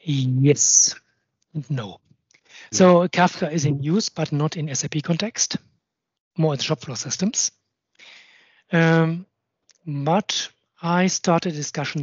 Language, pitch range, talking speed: Danish, 150-185 Hz, 110 wpm